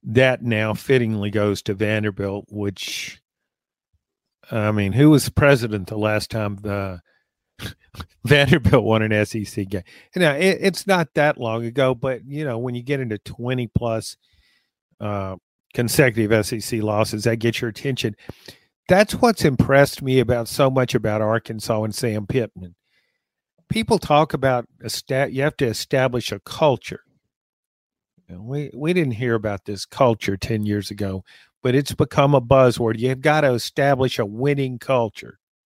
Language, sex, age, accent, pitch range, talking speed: English, male, 50-69, American, 110-140 Hz, 150 wpm